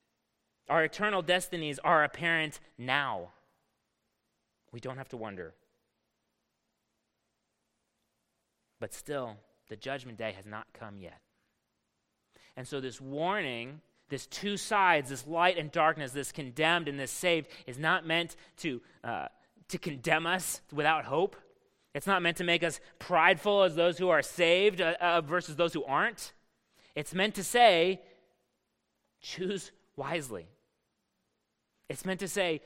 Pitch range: 135-180 Hz